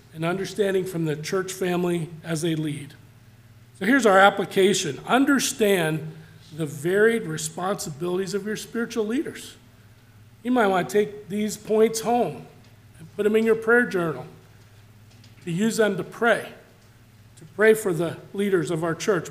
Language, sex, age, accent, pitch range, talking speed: English, male, 40-59, American, 150-205 Hz, 150 wpm